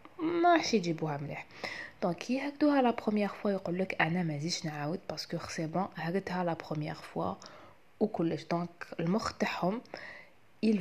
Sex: female